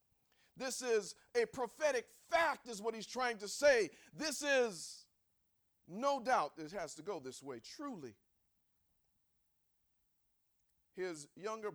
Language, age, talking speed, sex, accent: English, 40-59, 125 wpm, male, American